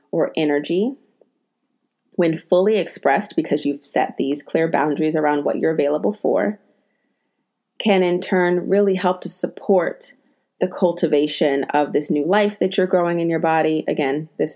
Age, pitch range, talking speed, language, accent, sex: 30-49, 150-175 Hz, 155 wpm, English, American, female